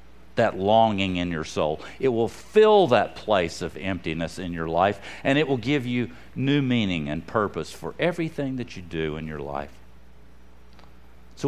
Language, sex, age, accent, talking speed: English, male, 50-69, American, 175 wpm